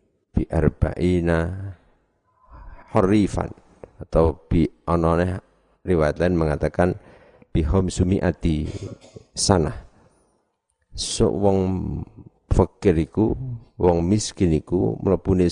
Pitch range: 80-100 Hz